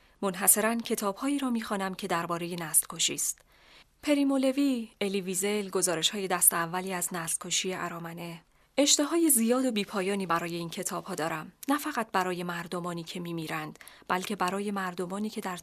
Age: 30-49